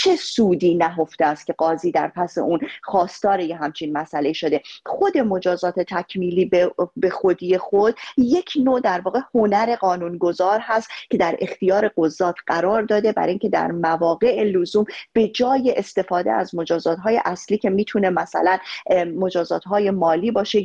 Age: 30-49